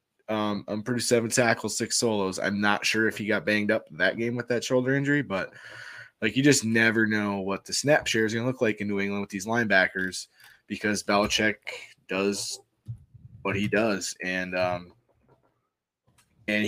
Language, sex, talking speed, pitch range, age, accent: English, male, 190 wpm, 95-115 Hz, 20-39, American